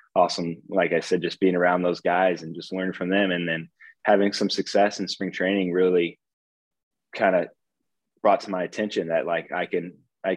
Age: 20-39